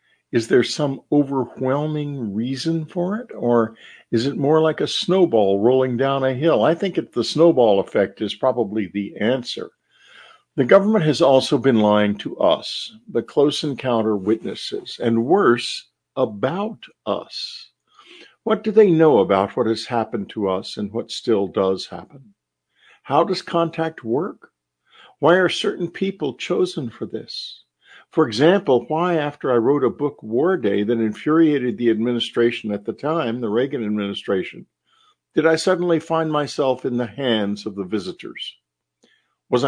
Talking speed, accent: 155 wpm, American